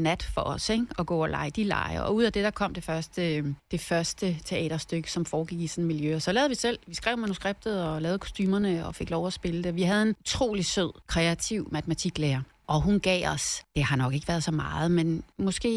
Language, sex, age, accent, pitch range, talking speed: Danish, female, 30-49, native, 165-200 Hz, 235 wpm